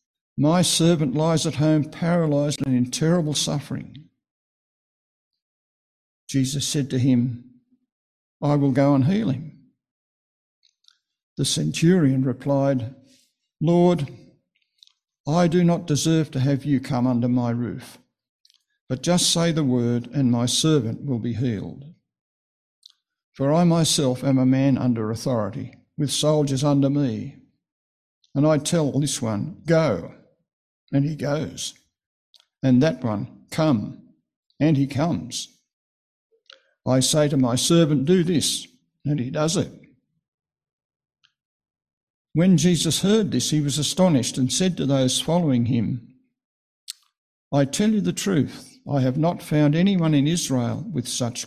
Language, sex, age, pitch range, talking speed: English, male, 60-79, 130-165 Hz, 130 wpm